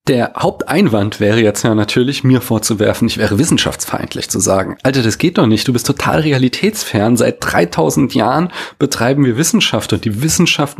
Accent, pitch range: German, 110-155 Hz